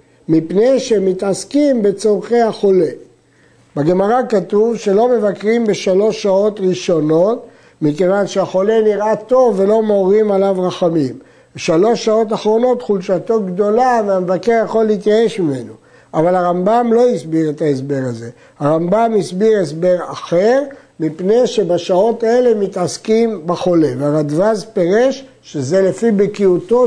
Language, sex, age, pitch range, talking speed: Hebrew, male, 60-79, 175-225 Hz, 110 wpm